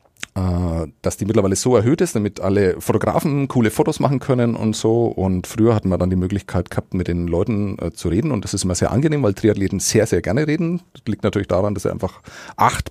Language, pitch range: German, 100-125 Hz